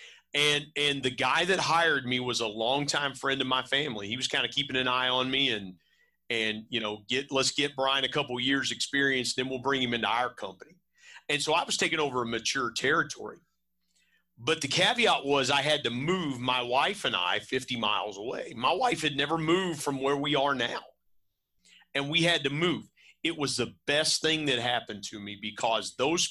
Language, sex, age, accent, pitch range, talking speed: English, male, 40-59, American, 125-165 Hz, 210 wpm